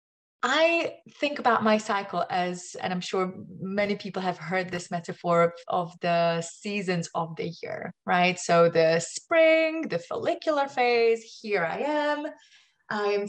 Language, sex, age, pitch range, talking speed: English, female, 20-39, 185-250 Hz, 145 wpm